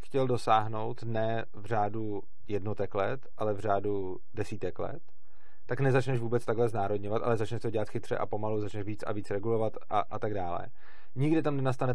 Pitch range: 105-125 Hz